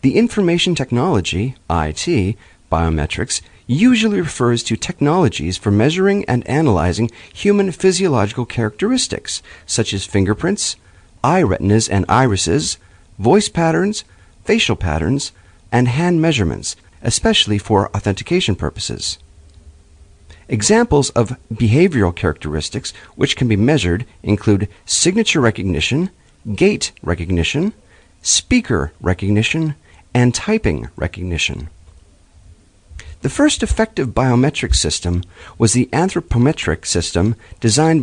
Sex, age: male, 40-59